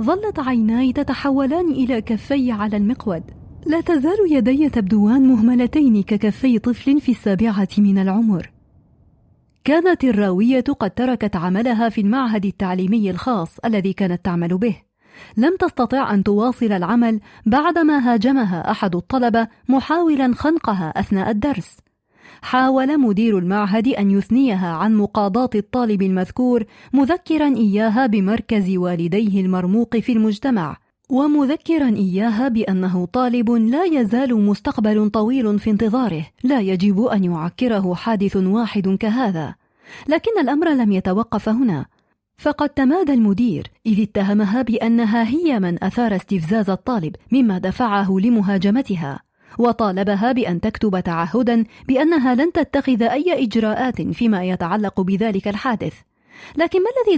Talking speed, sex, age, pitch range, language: 120 wpm, female, 30-49, 200-260 Hz, Arabic